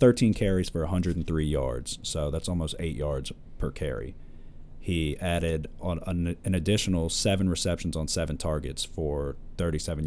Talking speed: 145 wpm